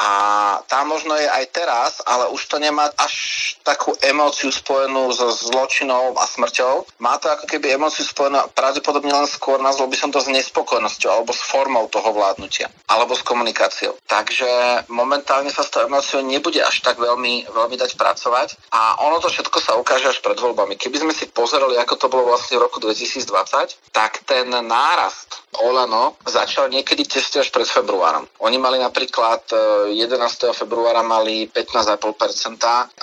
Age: 40-59